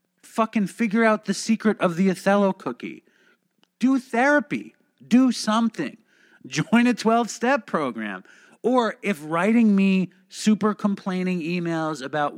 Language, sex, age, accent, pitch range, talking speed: English, male, 40-59, American, 155-215 Hz, 120 wpm